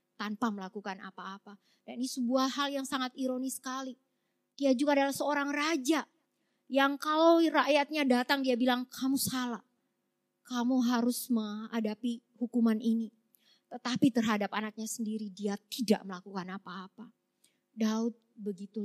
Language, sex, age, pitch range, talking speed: Indonesian, female, 20-39, 210-260 Hz, 125 wpm